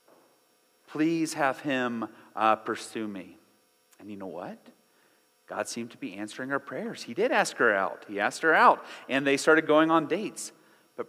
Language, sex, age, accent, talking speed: English, male, 40-59, American, 180 wpm